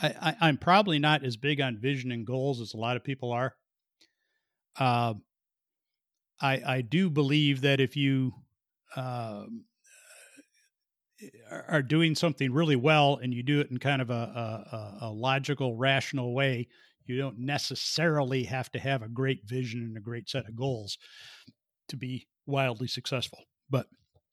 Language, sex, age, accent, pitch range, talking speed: English, male, 50-69, American, 130-160 Hz, 155 wpm